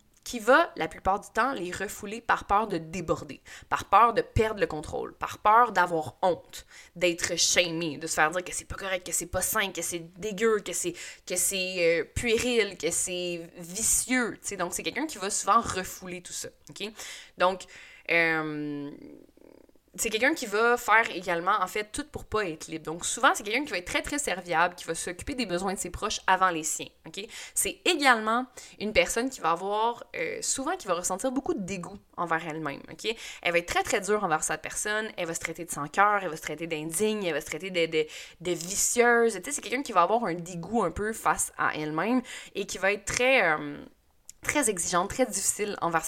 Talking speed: 215 wpm